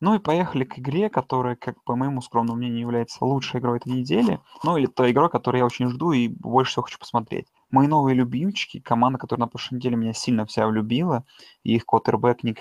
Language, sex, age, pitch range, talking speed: Russian, male, 20-39, 120-140 Hz, 215 wpm